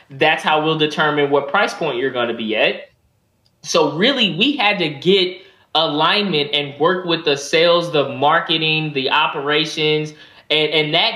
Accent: American